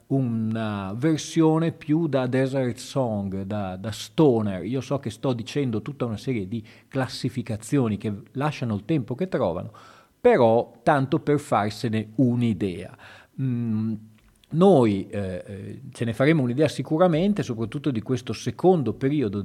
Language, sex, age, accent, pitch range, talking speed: Italian, male, 40-59, native, 110-150 Hz, 130 wpm